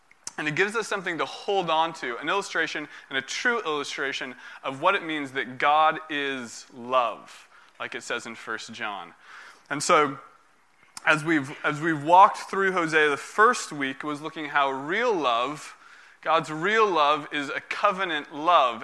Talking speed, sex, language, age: 170 wpm, male, English, 20-39